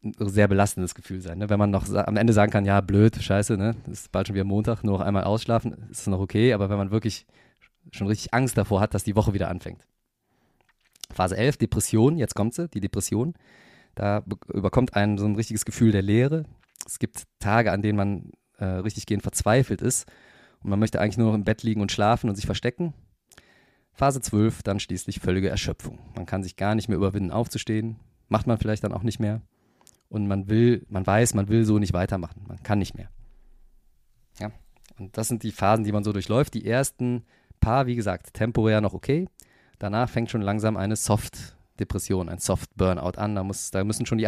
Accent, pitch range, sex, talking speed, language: German, 100-115 Hz, male, 210 wpm, German